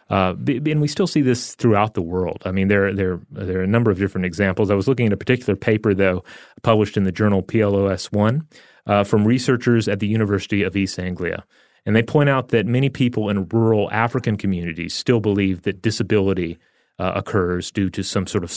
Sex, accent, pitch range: male, American, 90-110 Hz